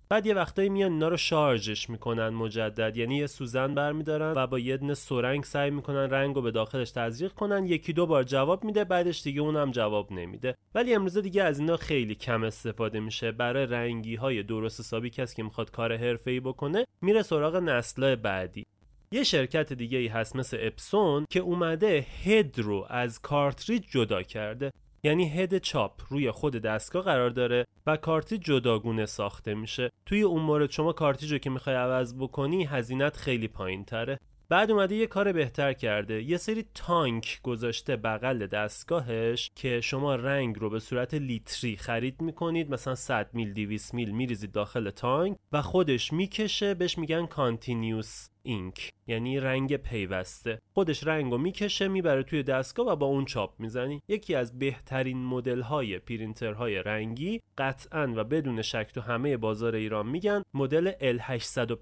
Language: Persian